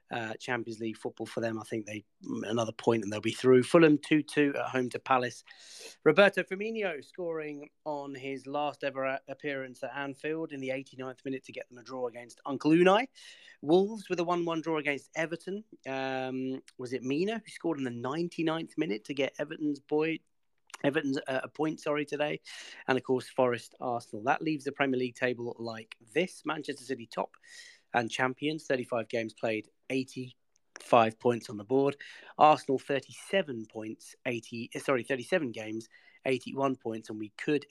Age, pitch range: 30-49, 120-155 Hz